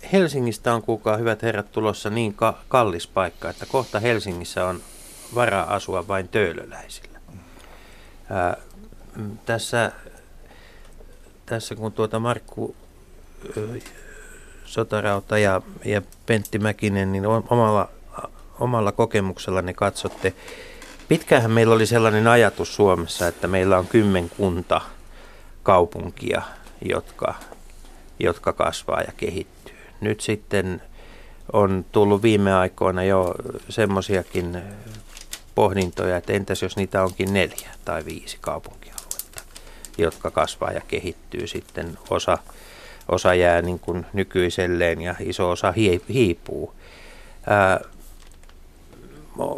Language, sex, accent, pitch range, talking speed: Finnish, male, native, 95-115 Hz, 105 wpm